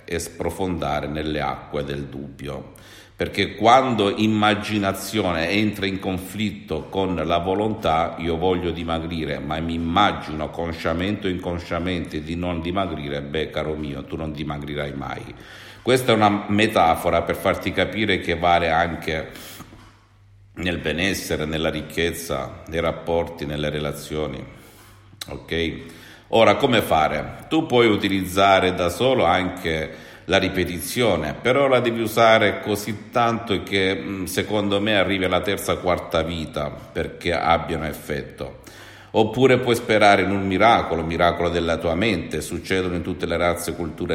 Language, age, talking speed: Italian, 50-69, 130 wpm